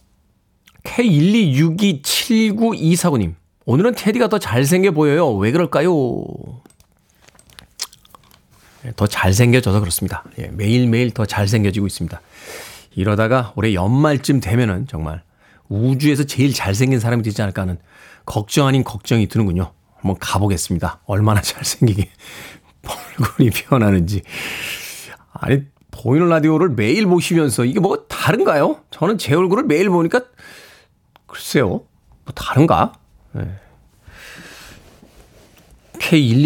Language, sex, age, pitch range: Korean, male, 40-59, 110-155 Hz